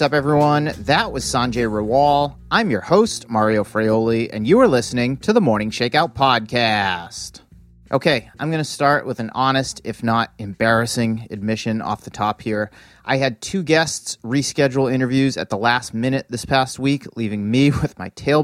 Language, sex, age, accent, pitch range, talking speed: English, male, 30-49, American, 110-150 Hz, 175 wpm